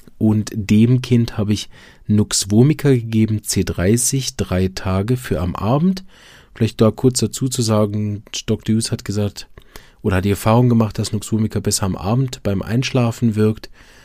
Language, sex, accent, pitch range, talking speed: German, male, German, 100-125 Hz, 155 wpm